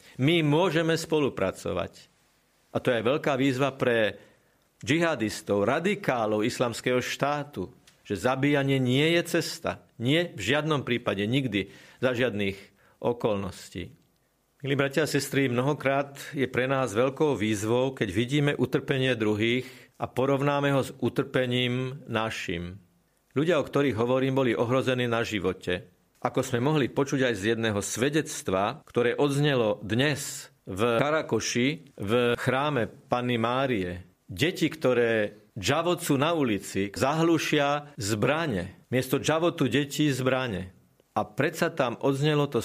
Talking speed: 120 wpm